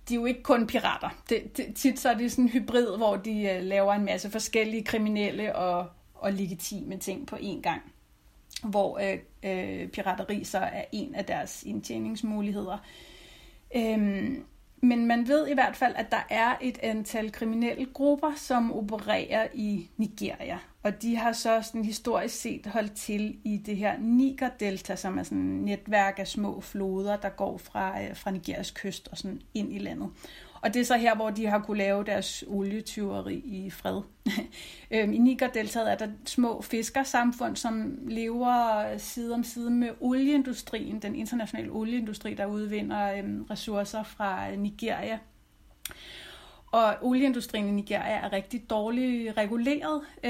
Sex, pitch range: female, 205-240 Hz